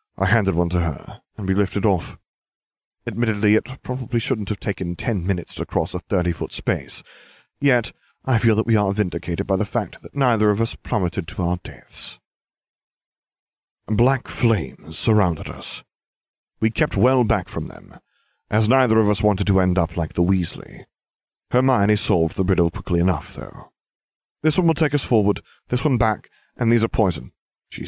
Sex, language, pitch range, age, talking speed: male, English, 95-130 Hz, 40-59, 175 wpm